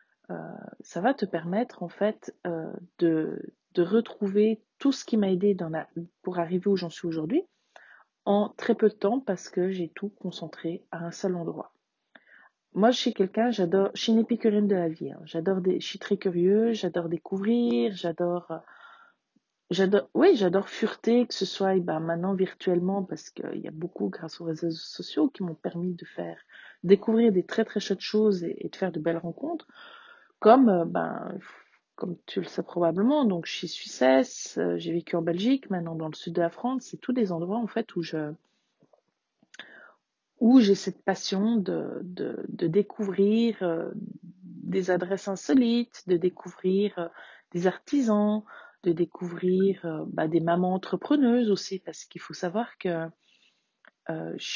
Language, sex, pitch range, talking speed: French, female, 175-225 Hz, 170 wpm